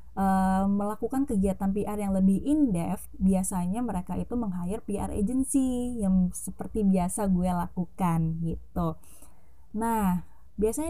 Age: 20-39